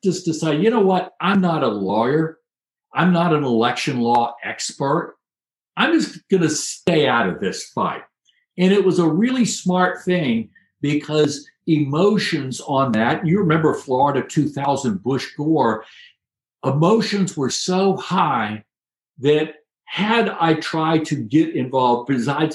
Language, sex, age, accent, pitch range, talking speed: English, male, 60-79, American, 130-180 Hz, 140 wpm